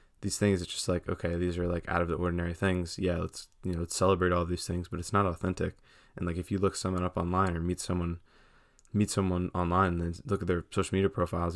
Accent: American